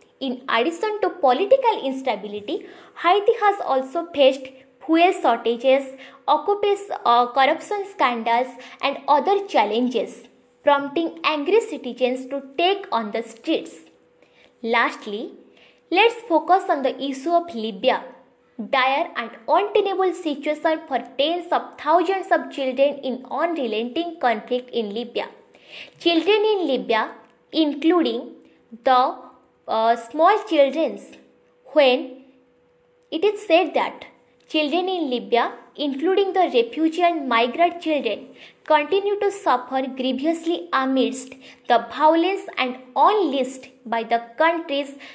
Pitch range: 250-350 Hz